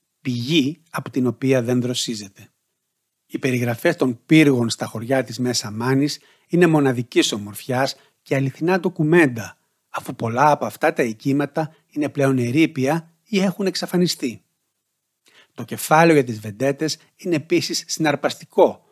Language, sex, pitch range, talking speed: Greek, male, 125-155 Hz, 130 wpm